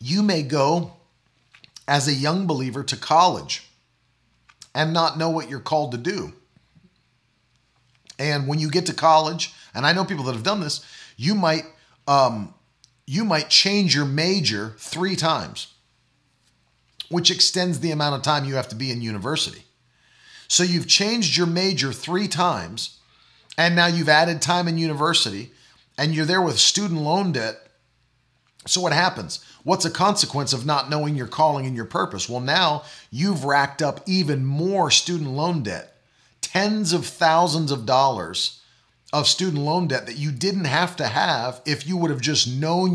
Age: 40-59